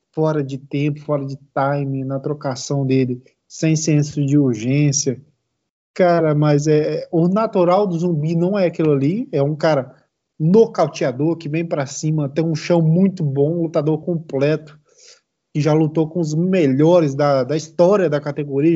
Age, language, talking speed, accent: 20-39, Portuguese, 160 wpm, Brazilian